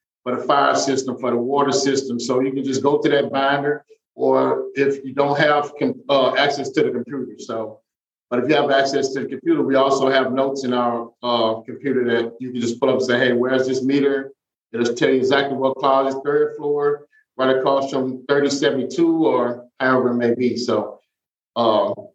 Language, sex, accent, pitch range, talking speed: English, male, American, 125-140 Hz, 205 wpm